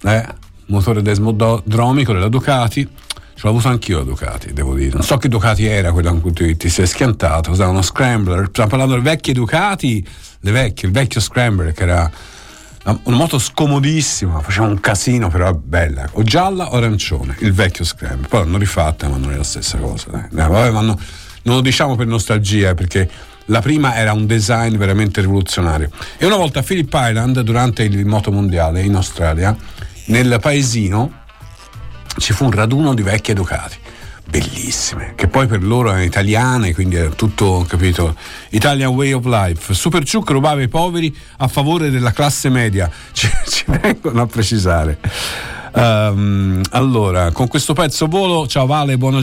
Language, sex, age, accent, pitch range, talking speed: Italian, male, 50-69, native, 90-130 Hz, 165 wpm